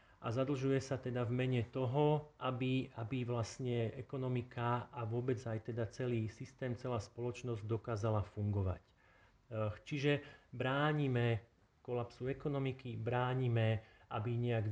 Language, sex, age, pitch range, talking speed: Slovak, male, 40-59, 115-130 Hz, 110 wpm